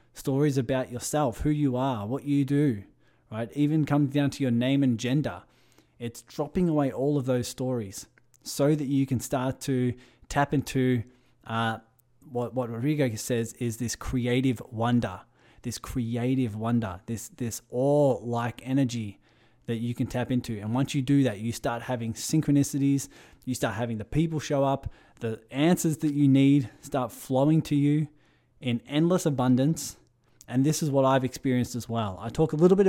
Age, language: 20-39, English